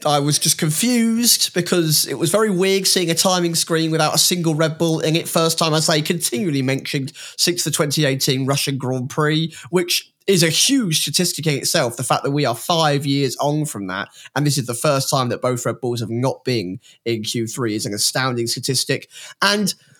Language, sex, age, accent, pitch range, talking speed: English, male, 20-39, British, 140-180 Hz, 210 wpm